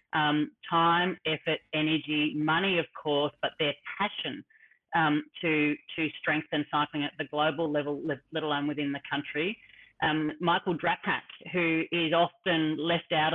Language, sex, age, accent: English, female, 30-49, Australian